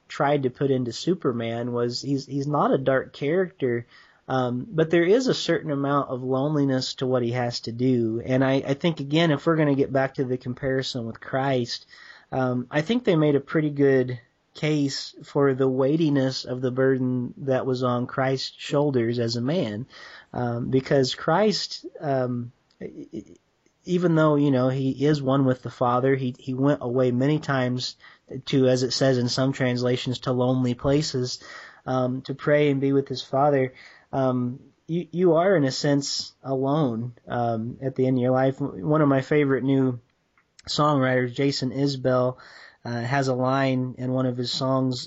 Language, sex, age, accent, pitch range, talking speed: English, male, 30-49, American, 125-140 Hz, 180 wpm